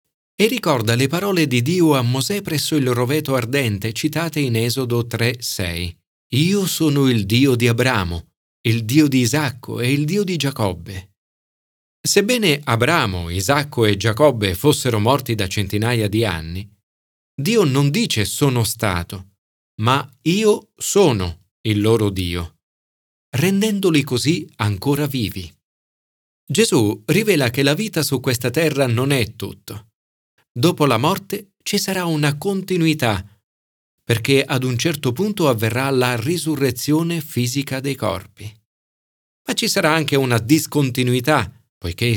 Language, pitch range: Italian, 105-150 Hz